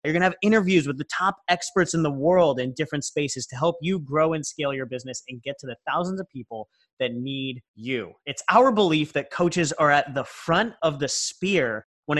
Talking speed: 225 wpm